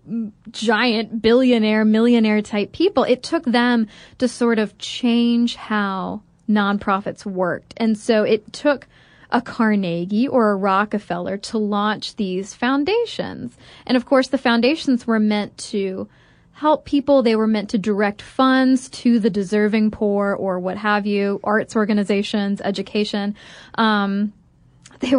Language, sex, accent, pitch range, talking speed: English, female, American, 205-245 Hz, 135 wpm